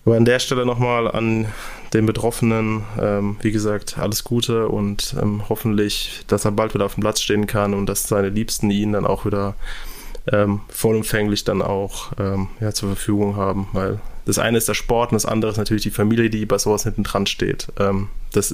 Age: 20-39